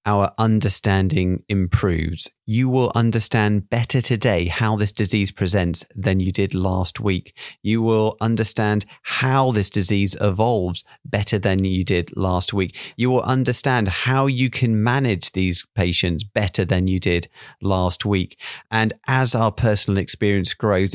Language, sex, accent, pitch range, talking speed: English, male, British, 95-115 Hz, 145 wpm